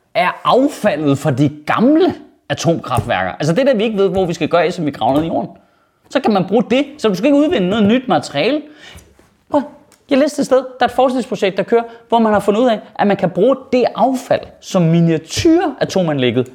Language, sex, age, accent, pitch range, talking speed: Danish, male, 30-49, native, 165-250 Hz, 220 wpm